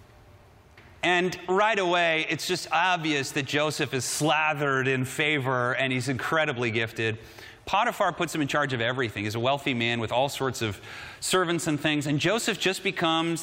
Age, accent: 30-49, American